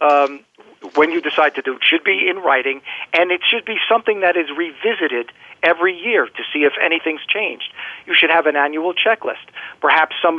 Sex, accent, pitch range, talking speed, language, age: male, American, 145-225 Hz, 195 wpm, English, 50-69